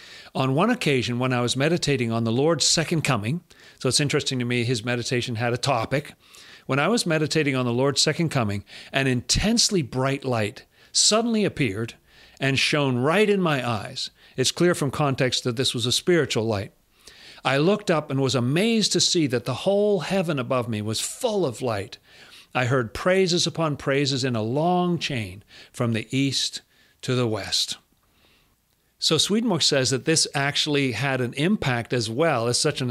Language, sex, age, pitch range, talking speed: English, male, 40-59, 125-160 Hz, 180 wpm